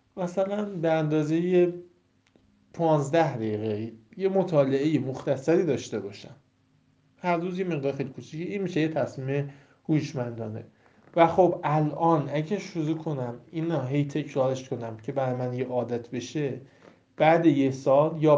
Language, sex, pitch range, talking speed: Persian, male, 125-160 Hz, 140 wpm